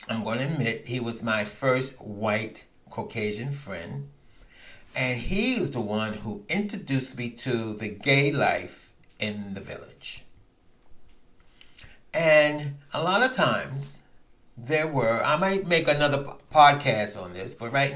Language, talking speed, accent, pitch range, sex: English, 140 wpm, American, 110-145 Hz, male